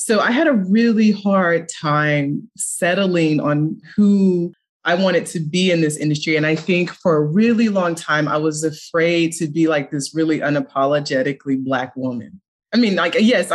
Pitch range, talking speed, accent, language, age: 150-185 Hz, 175 wpm, American, English, 20-39